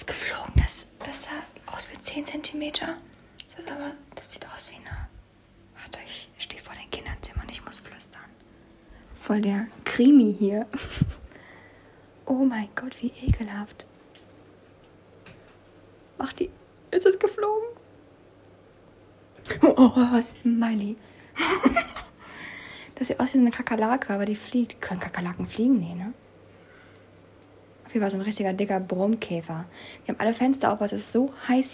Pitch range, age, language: 205-270 Hz, 20-39, German